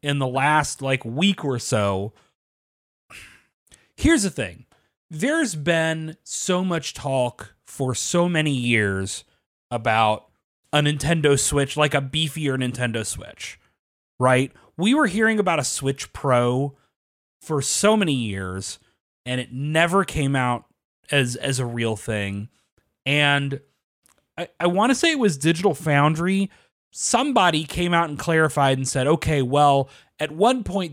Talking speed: 140 wpm